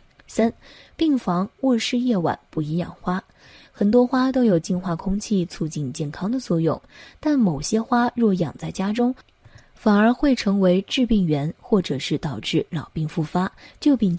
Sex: female